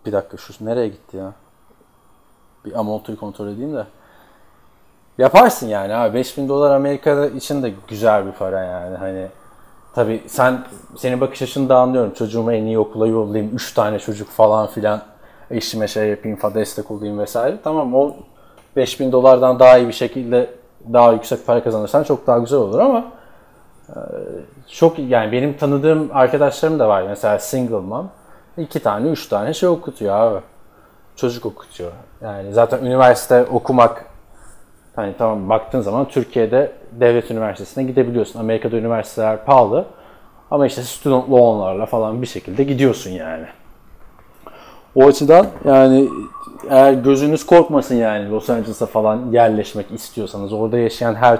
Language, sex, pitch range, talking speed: Turkish, male, 110-135 Hz, 145 wpm